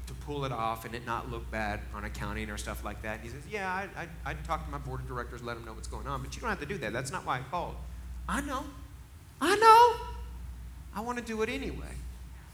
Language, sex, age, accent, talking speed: English, male, 30-49, American, 270 wpm